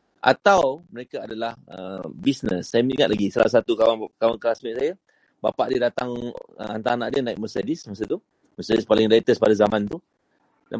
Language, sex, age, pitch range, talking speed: Malay, male, 30-49, 115-175 Hz, 180 wpm